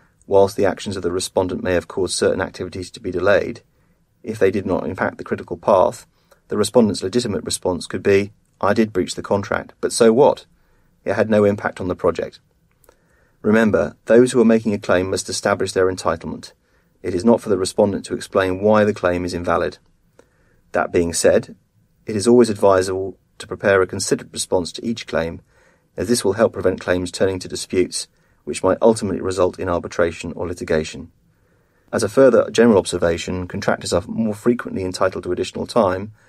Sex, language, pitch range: male, English, 90-115 Hz